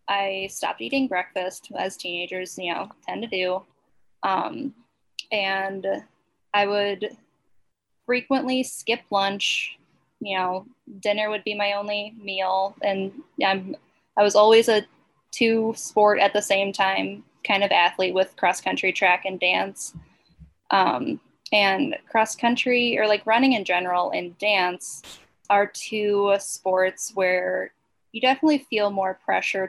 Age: 10-29